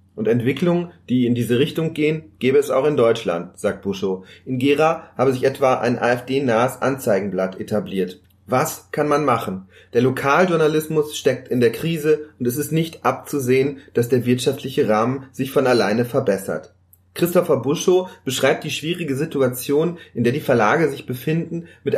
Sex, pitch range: male, 120-160 Hz